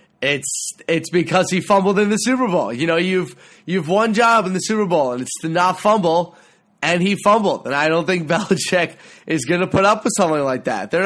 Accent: American